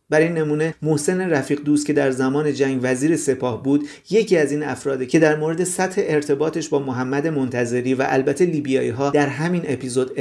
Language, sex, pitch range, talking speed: Persian, male, 135-175 Hz, 180 wpm